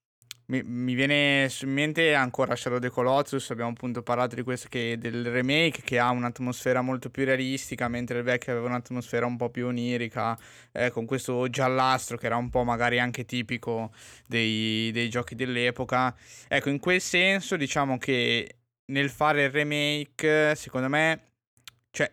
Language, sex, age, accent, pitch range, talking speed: Italian, male, 20-39, native, 120-135 Hz, 165 wpm